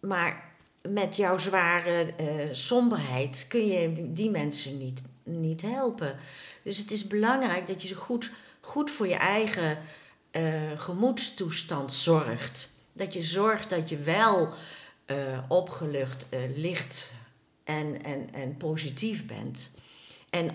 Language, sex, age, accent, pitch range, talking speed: Dutch, female, 60-79, Dutch, 145-200 Hz, 125 wpm